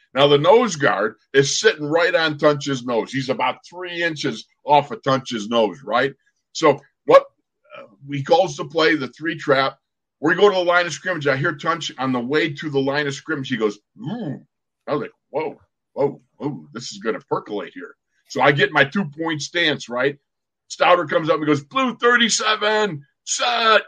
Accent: American